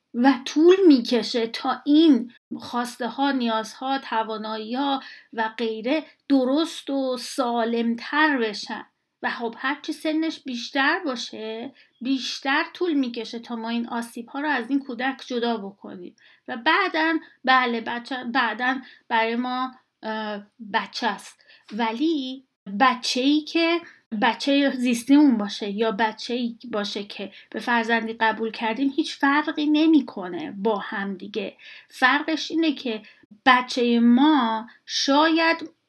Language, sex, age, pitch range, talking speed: Persian, female, 30-49, 230-290 Hz, 120 wpm